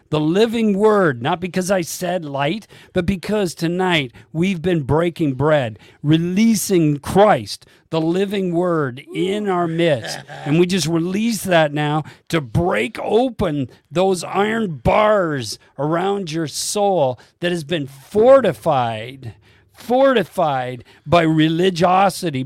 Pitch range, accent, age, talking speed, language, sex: 115-180 Hz, American, 50-69, 120 wpm, English, male